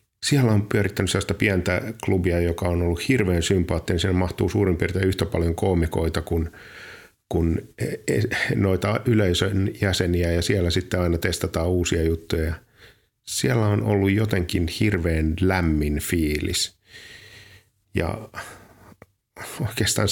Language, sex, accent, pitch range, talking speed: Finnish, male, native, 85-100 Hz, 115 wpm